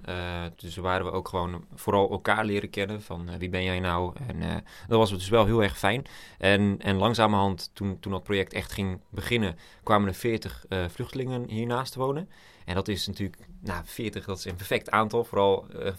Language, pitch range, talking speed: Dutch, 95-115 Hz, 215 wpm